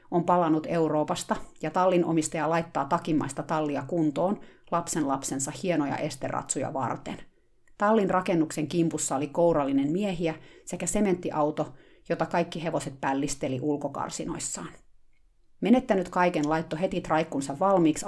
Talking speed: 110 wpm